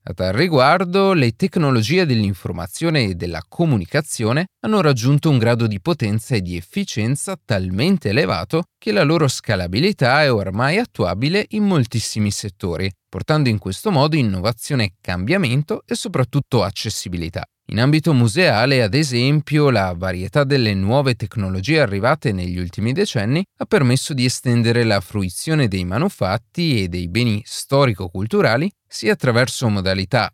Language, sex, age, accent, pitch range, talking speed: Italian, male, 30-49, native, 100-155 Hz, 135 wpm